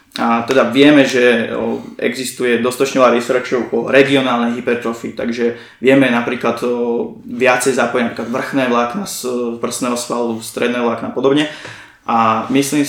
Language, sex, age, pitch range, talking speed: Slovak, male, 20-39, 125-145 Hz, 125 wpm